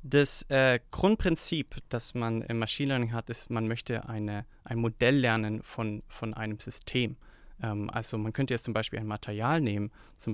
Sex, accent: male, German